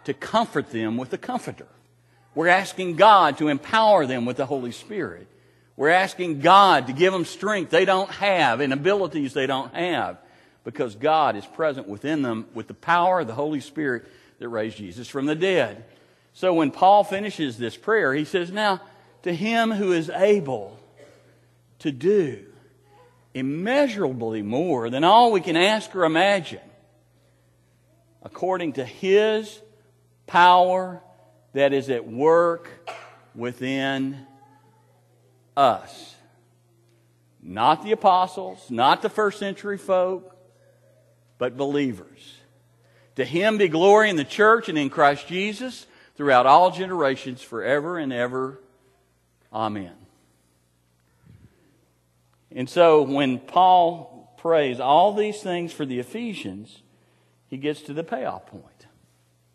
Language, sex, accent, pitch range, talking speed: English, male, American, 120-185 Hz, 130 wpm